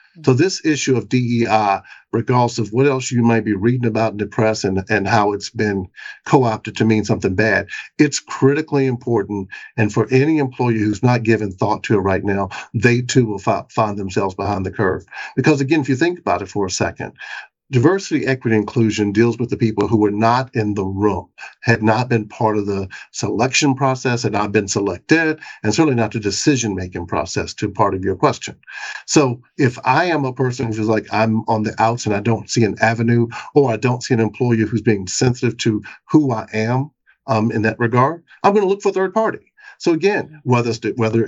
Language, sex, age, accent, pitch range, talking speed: English, male, 50-69, American, 110-130 Hz, 205 wpm